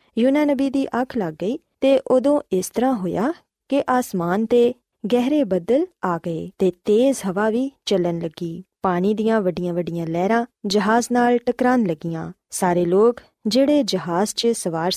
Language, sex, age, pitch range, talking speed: Punjabi, female, 20-39, 185-250 Hz, 150 wpm